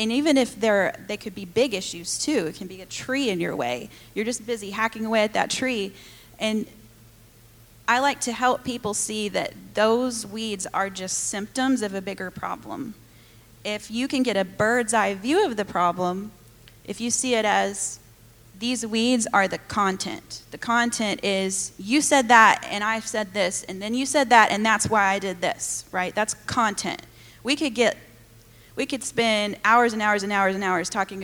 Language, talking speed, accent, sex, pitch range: English, 195 wpm, American, female, 180-230 Hz